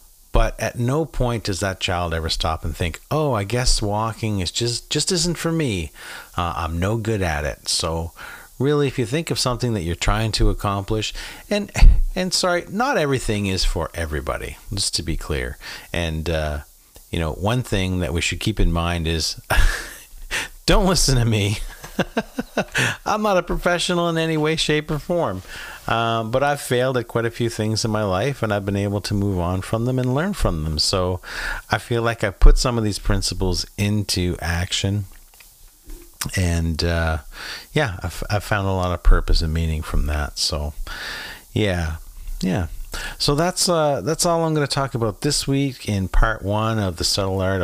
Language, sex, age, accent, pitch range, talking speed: English, male, 40-59, American, 85-125 Hz, 190 wpm